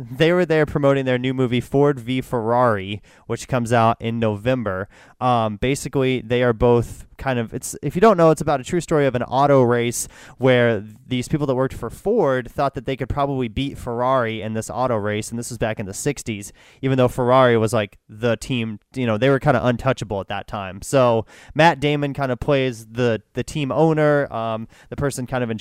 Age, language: 30-49, English